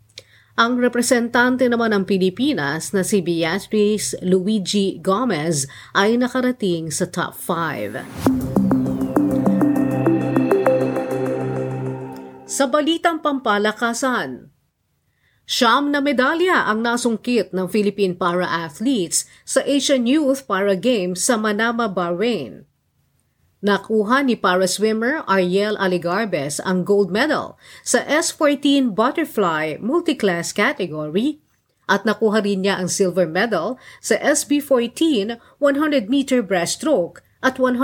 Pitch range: 180-245 Hz